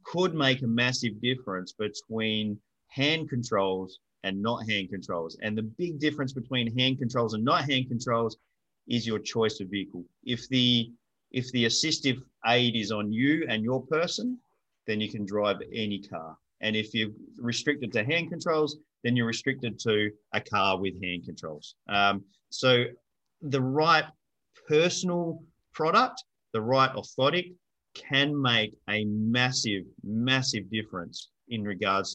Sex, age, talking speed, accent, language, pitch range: male, 30-49, 145 wpm, Australian, English, 100-130 Hz